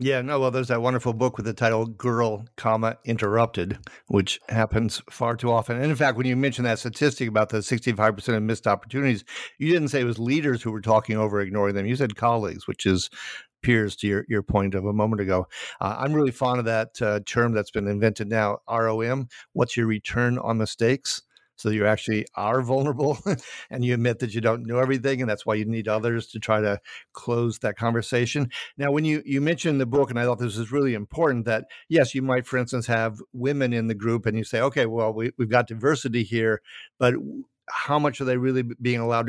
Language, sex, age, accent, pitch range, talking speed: English, male, 50-69, American, 110-130 Hz, 220 wpm